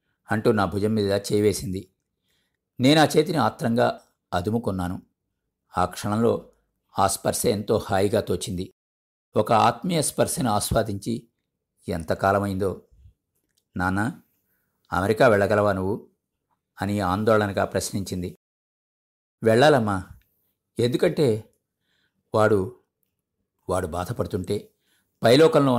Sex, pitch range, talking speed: male, 95-115 Hz, 80 wpm